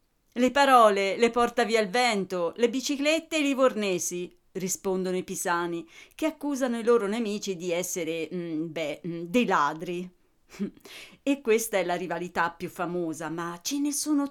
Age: 40-59